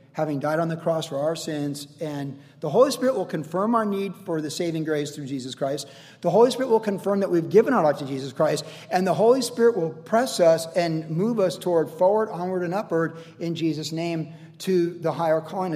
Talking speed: 220 wpm